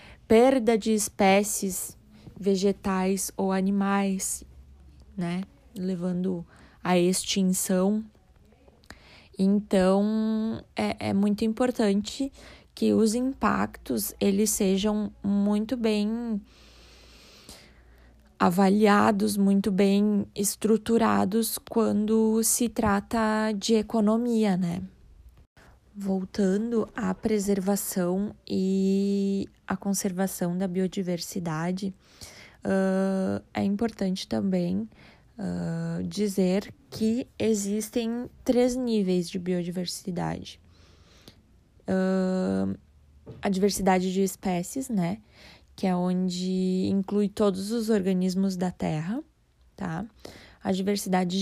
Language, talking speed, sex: Portuguese, 75 wpm, female